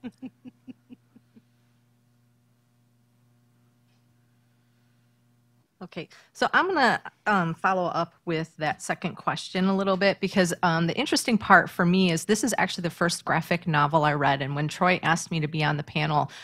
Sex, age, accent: female, 30-49, American